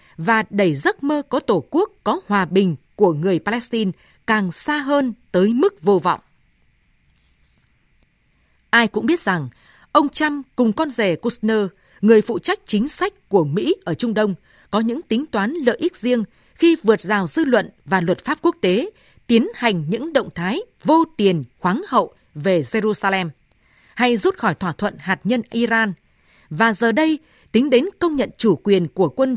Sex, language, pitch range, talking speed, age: female, Vietnamese, 195-280 Hz, 180 wpm, 20-39